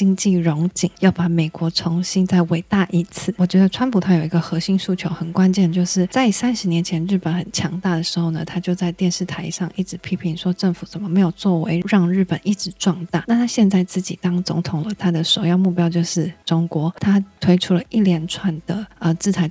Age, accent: 20-39, native